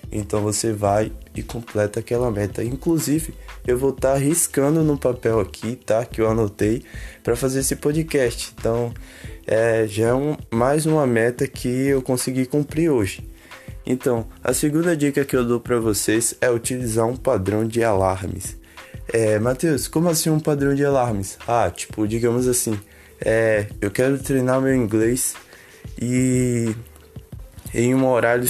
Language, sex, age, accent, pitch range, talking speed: Portuguese, male, 20-39, Brazilian, 110-130 Hz, 145 wpm